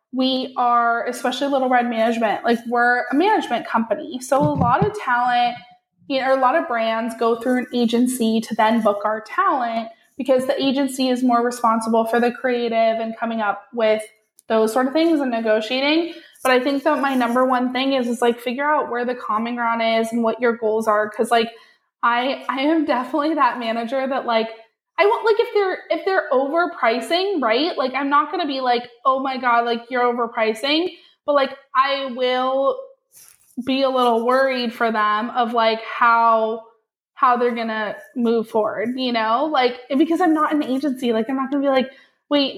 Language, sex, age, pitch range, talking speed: English, female, 20-39, 230-280 Hz, 195 wpm